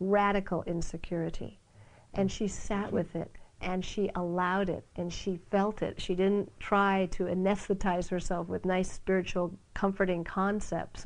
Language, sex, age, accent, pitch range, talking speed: English, female, 50-69, American, 170-205 Hz, 140 wpm